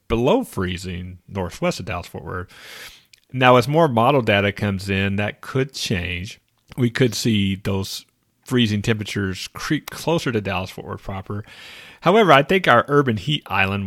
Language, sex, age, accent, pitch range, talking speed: English, male, 40-59, American, 95-125 Hz, 150 wpm